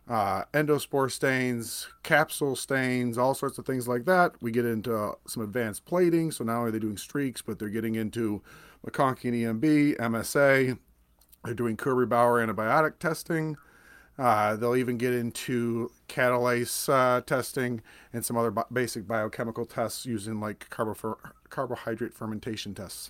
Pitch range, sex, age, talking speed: 115-140 Hz, male, 40-59, 150 wpm